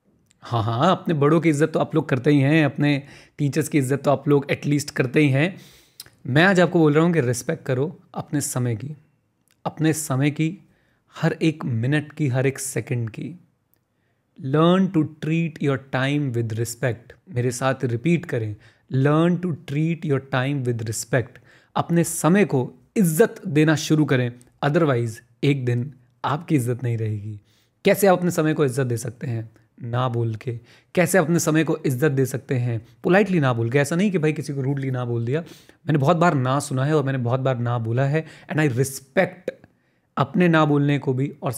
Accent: native